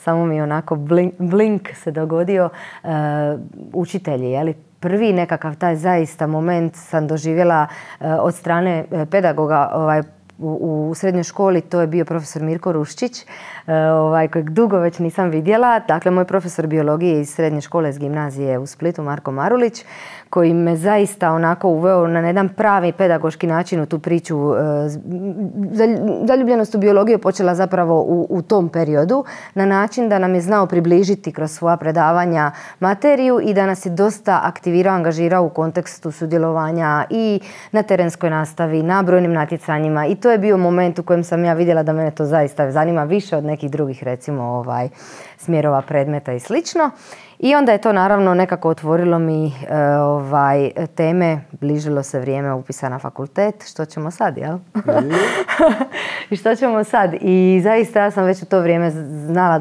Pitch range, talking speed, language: 155-190 Hz, 160 wpm, Croatian